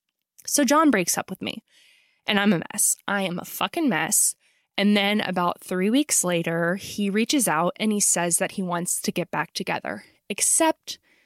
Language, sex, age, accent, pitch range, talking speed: English, female, 20-39, American, 175-245 Hz, 185 wpm